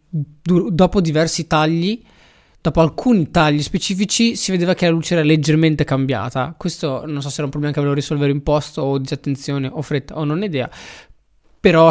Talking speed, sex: 180 wpm, male